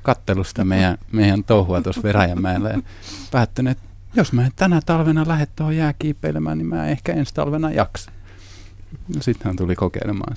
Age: 30-49